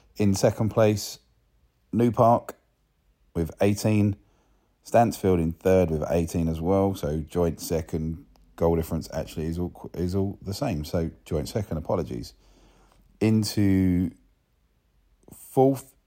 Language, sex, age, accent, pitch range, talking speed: English, male, 30-49, British, 80-100 Hz, 120 wpm